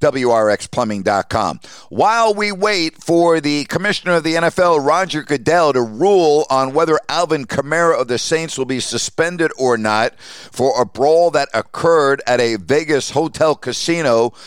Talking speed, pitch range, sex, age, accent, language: 150 wpm, 135-170 Hz, male, 50-69, American, English